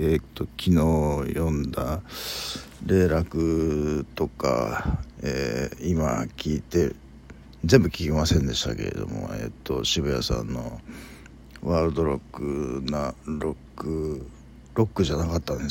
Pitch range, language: 75-90 Hz, Japanese